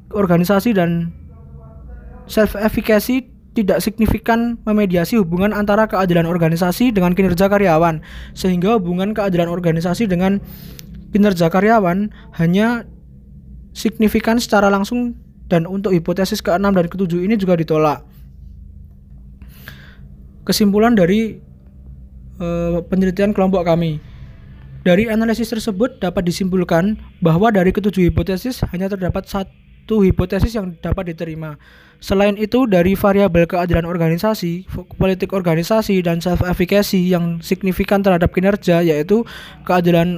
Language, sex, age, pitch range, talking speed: Indonesian, male, 20-39, 170-205 Hz, 110 wpm